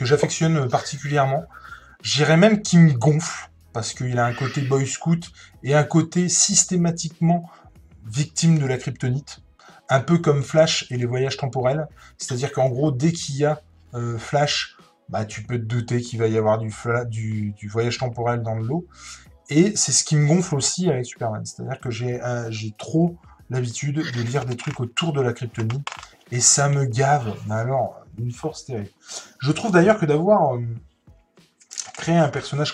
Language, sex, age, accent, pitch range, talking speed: French, male, 20-39, French, 125-165 Hz, 190 wpm